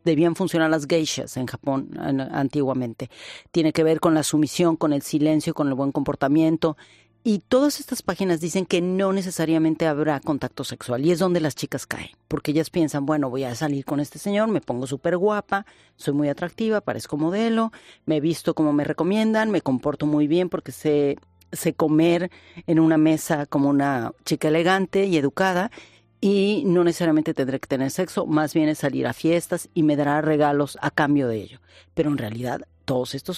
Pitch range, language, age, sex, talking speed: 140-170 Hz, Spanish, 40-59, female, 185 wpm